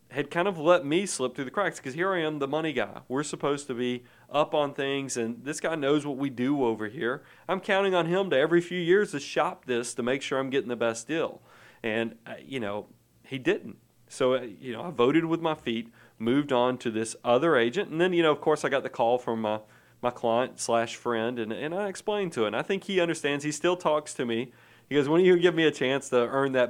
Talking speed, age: 250 wpm, 40-59